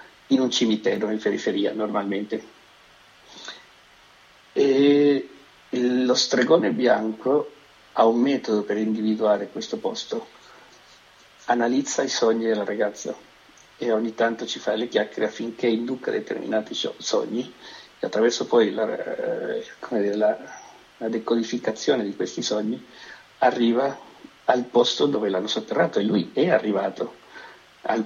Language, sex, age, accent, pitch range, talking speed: Italian, male, 50-69, native, 110-125 Hz, 120 wpm